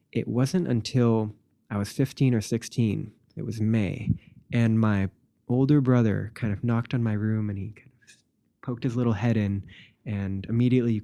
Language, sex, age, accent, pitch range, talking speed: English, male, 20-39, American, 110-125 Hz, 180 wpm